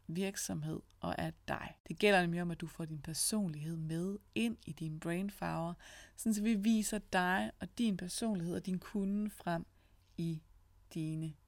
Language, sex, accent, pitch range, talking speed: Danish, female, native, 150-205 Hz, 160 wpm